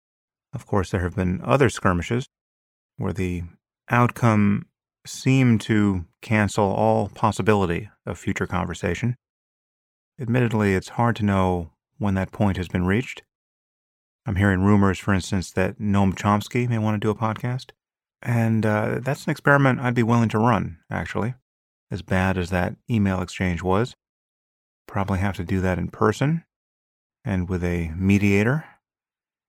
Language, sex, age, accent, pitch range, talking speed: English, male, 30-49, American, 95-115 Hz, 145 wpm